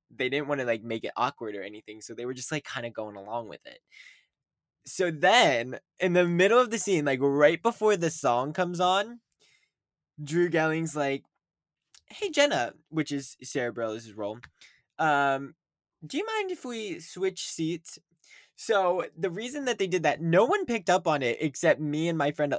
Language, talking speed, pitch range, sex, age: English, 190 wpm, 120-165 Hz, male, 10-29